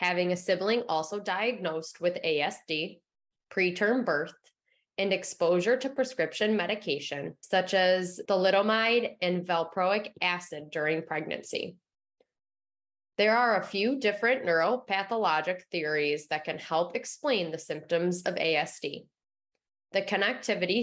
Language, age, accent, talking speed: English, 20-39, American, 110 wpm